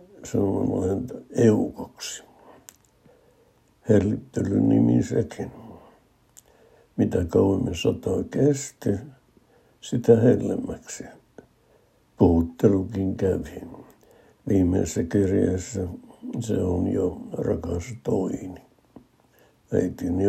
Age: 60-79